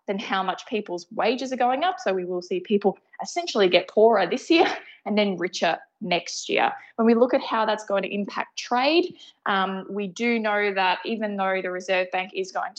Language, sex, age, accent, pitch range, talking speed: English, female, 20-39, Australian, 190-235 Hz, 210 wpm